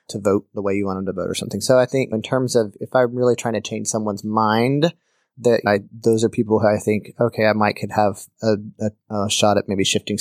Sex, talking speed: male, 260 wpm